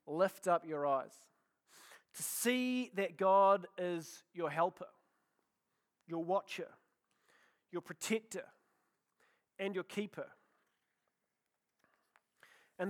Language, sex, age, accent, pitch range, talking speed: English, male, 30-49, Australian, 185-225 Hz, 90 wpm